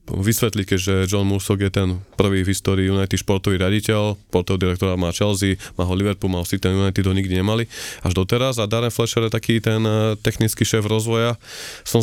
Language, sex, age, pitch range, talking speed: Slovak, male, 20-39, 100-115 Hz, 190 wpm